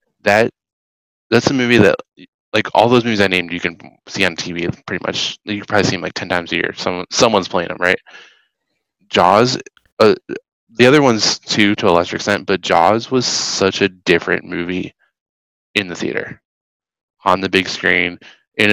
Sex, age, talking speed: male, 20-39, 185 wpm